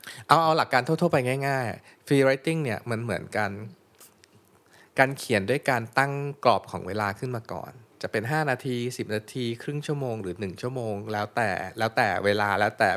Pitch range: 105-130 Hz